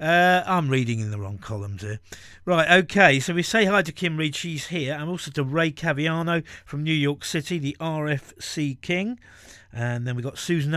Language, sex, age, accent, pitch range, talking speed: English, male, 50-69, British, 135-180 Hz, 205 wpm